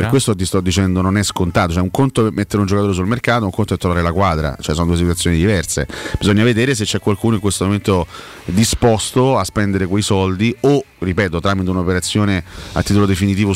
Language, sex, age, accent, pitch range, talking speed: Italian, male, 30-49, native, 90-105 Hz, 215 wpm